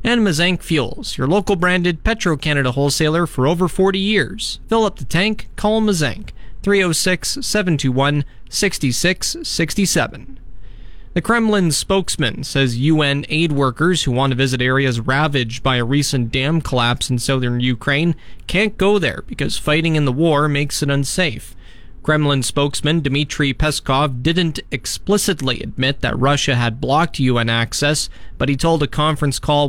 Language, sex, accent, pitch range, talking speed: English, male, American, 130-160 Hz, 140 wpm